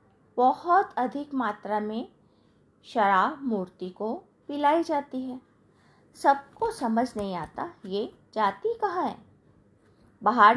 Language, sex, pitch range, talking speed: Hindi, female, 200-285 Hz, 110 wpm